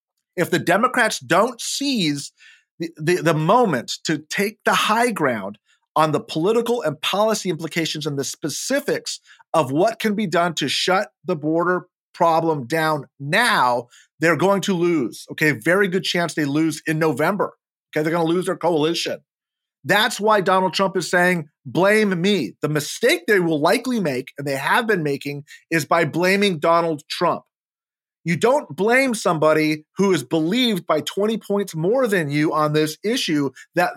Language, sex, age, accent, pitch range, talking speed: English, male, 40-59, American, 160-205 Hz, 170 wpm